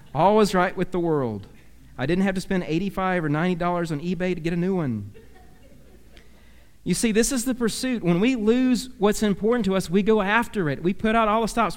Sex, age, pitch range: male, 40-59, 170-225 Hz